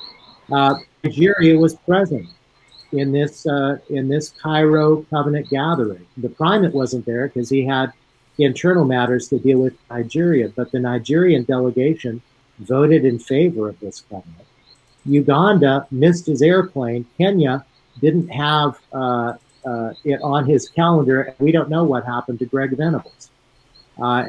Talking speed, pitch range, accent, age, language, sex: 140 wpm, 125-155 Hz, American, 50-69, English, male